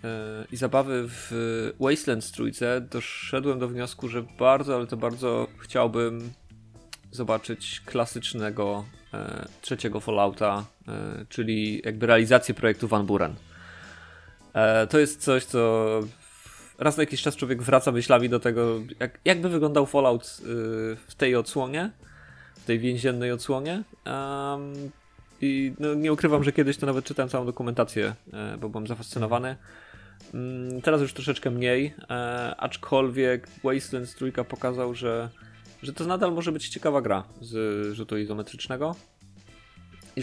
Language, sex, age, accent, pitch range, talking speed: Polish, male, 20-39, native, 110-130 Hz, 130 wpm